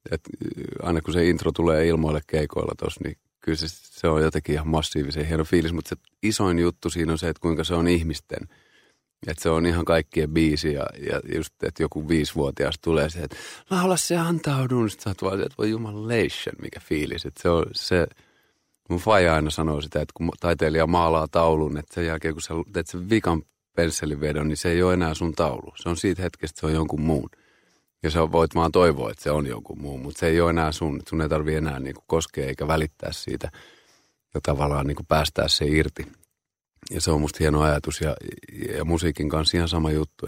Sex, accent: male, native